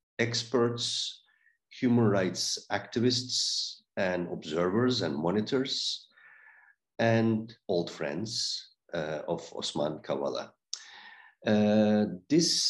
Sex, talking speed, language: male, 80 wpm, Turkish